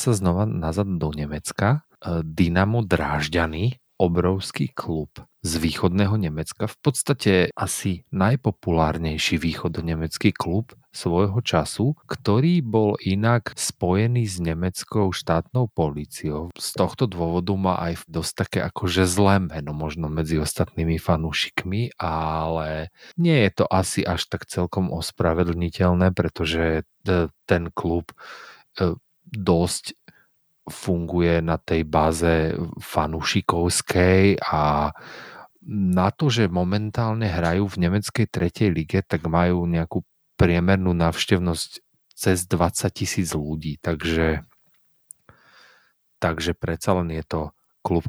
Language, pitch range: Slovak, 80-100 Hz